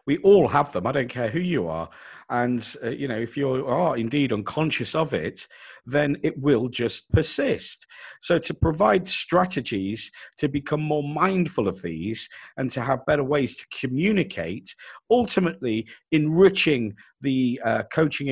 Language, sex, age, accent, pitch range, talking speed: English, male, 50-69, British, 115-185 Hz, 155 wpm